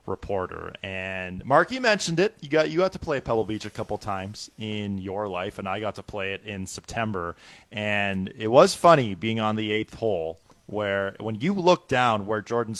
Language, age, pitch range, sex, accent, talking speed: English, 30-49, 105-130 Hz, male, American, 200 wpm